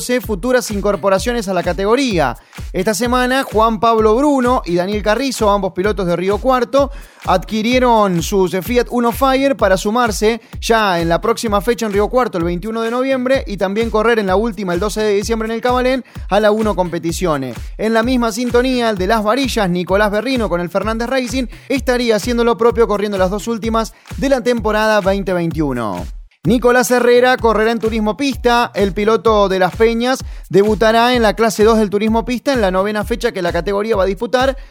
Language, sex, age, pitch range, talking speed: Spanish, male, 20-39, 195-240 Hz, 190 wpm